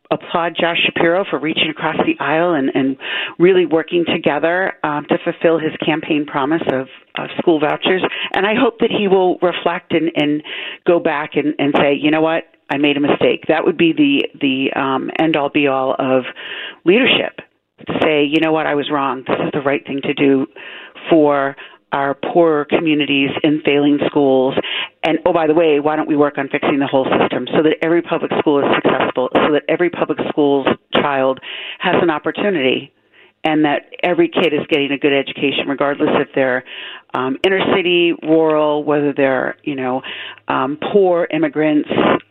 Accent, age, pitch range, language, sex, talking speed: American, 40-59, 140-170 Hz, English, female, 185 wpm